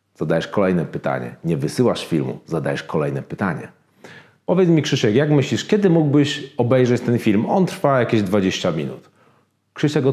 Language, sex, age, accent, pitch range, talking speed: Polish, male, 40-59, native, 100-150 Hz, 150 wpm